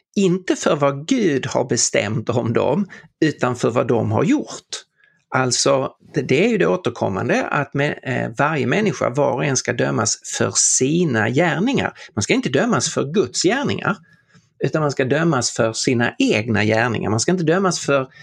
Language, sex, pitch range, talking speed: Swedish, male, 120-180 Hz, 170 wpm